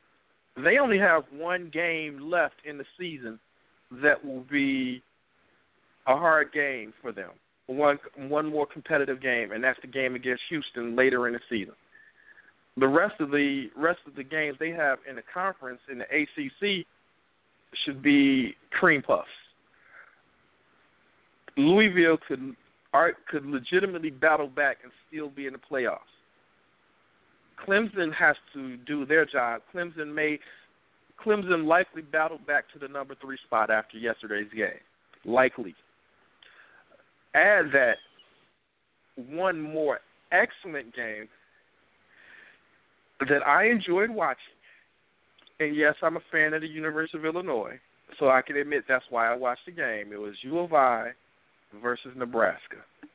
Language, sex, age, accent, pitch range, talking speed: English, male, 50-69, American, 130-170 Hz, 140 wpm